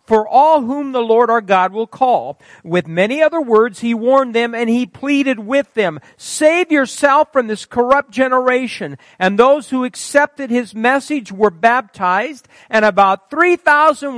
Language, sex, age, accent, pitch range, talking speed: English, male, 50-69, American, 225-300 Hz, 160 wpm